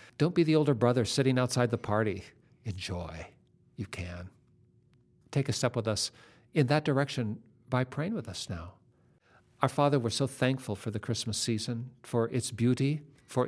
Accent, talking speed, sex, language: American, 170 wpm, male, English